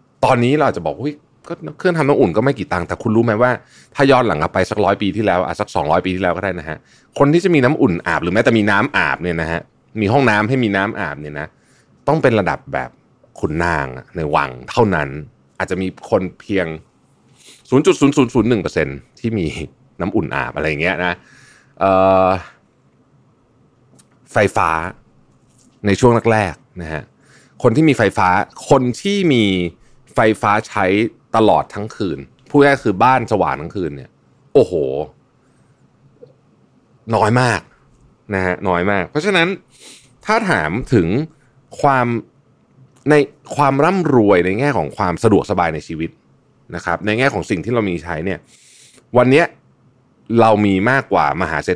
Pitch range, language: 90-130 Hz, Thai